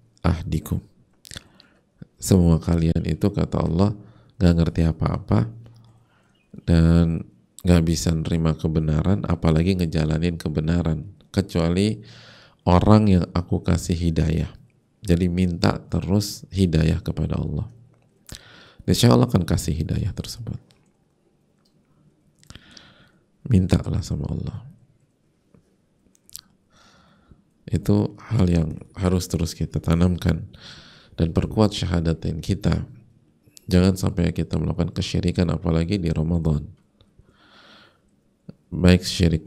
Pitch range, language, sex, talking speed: 80-100 Hz, Indonesian, male, 90 wpm